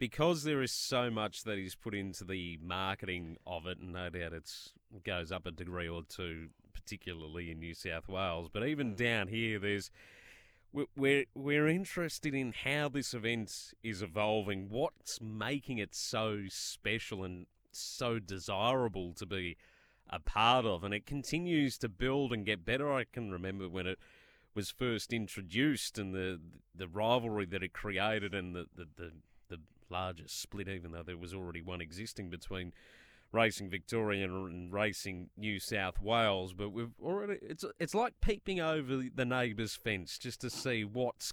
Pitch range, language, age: 90-120 Hz, English, 30-49